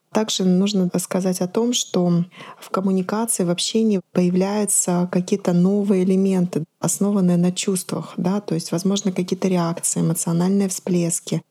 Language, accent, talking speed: Russian, native, 130 wpm